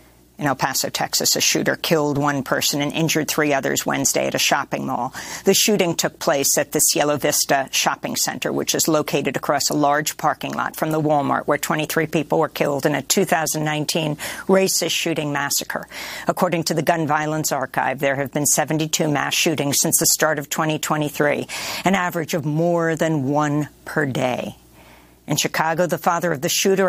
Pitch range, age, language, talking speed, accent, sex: 150-195 Hz, 50-69, English, 185 wpm, American, female